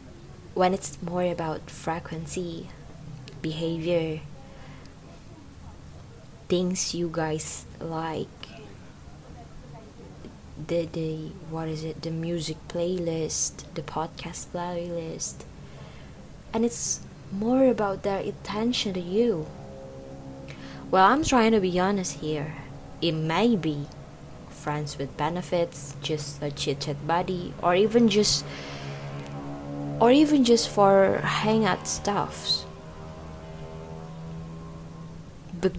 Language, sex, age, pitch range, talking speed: Indonesian, female, 20-39, 145-185 Hz, 95 wpm